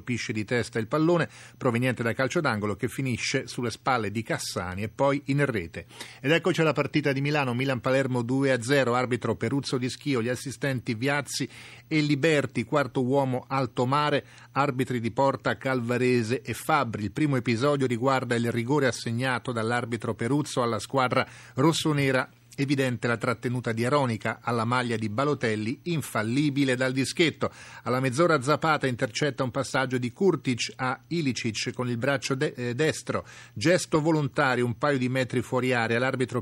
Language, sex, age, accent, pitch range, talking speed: Italian, male, 40-59, native, 120-140 Hz, 155 wpm